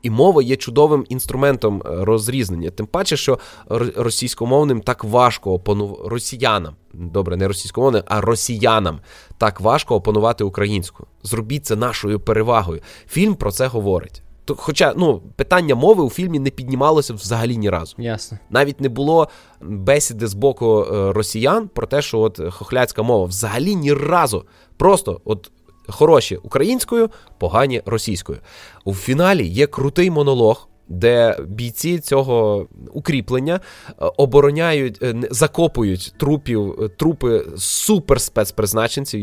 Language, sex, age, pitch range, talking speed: Ukrainian, male, 20-39, 110-150 Hz, 120 wpm